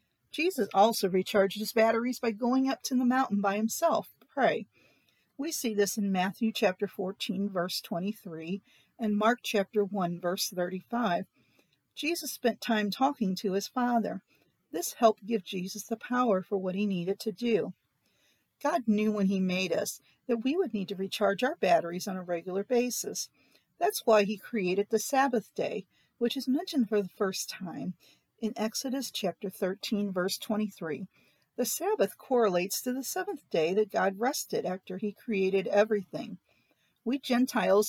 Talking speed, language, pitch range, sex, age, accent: 165 wpm, English, 195-235 Hz, female, 50-69, American